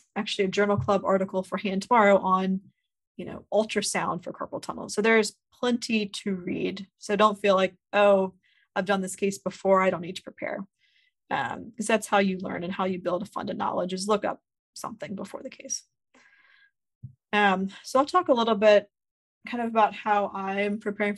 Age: 20-39